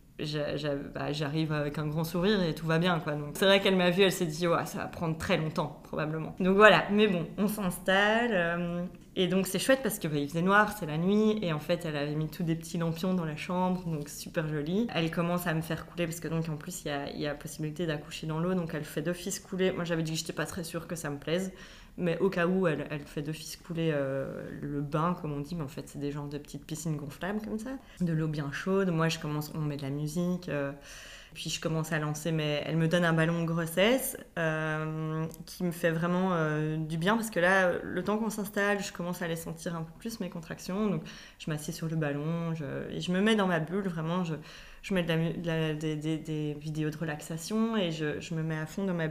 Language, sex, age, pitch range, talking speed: English, female, 20-39, 155-185 Hz, 260 wpm